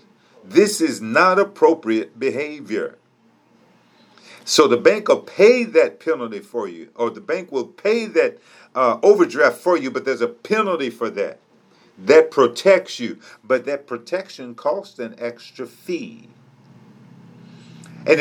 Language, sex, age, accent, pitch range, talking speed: English, male, 50-69, American, 130-200 Hz, 135 wpm